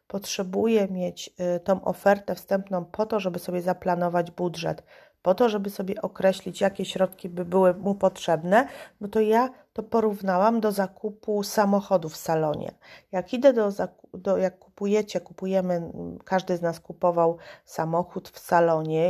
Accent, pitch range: native, 170-200 Hz